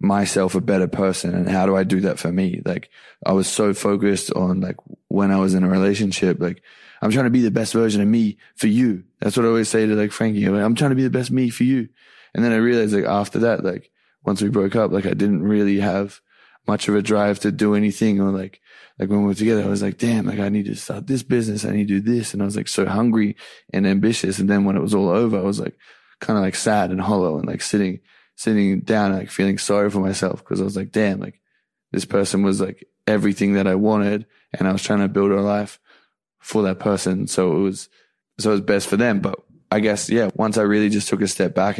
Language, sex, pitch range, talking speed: English, male, 95-105 Hz, 260 wpm